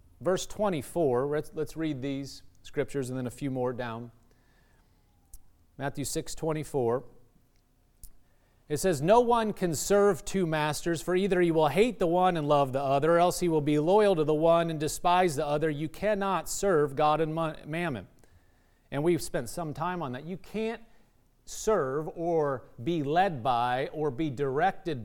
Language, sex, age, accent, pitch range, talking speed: English, male, 40-59, American, 140-185 Hz, 170 wpm